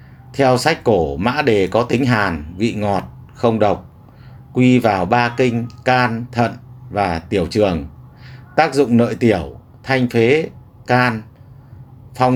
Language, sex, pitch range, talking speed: Vietnamese, male, 105-125 Hz, 140 wpm